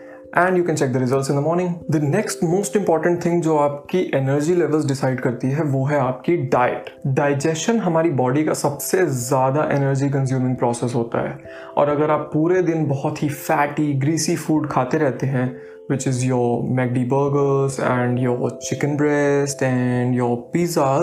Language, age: Hindi, 20-39